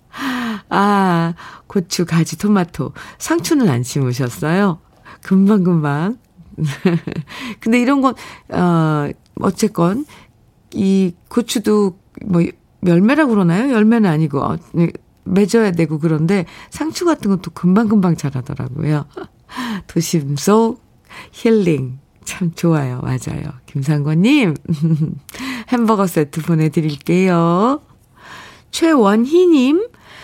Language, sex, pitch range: Korean, female, 165-225 Hz